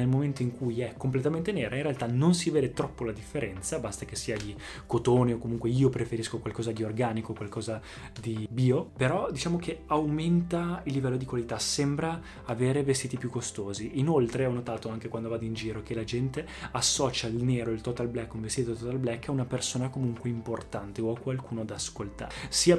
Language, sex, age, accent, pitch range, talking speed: Italian, male, 20-39, native, 110-130 Hz, 195 wpm